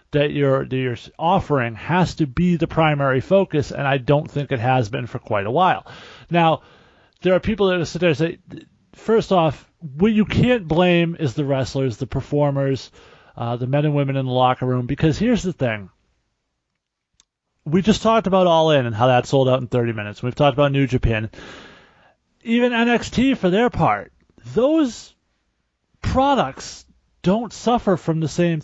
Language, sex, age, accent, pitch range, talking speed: English, male, 30-49, American, 135-205 Hz, 180 wpm